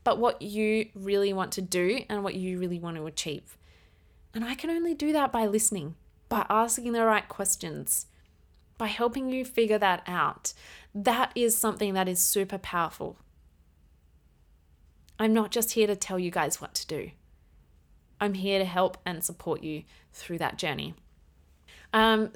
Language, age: English, 20-39